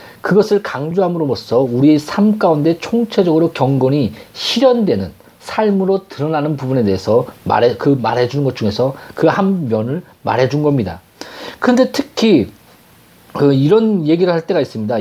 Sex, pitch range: male, 130-190 Hz